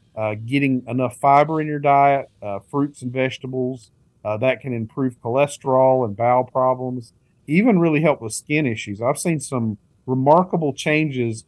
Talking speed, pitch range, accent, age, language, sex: 155 wpm, 120-145 Hz, American, 40-59, English, male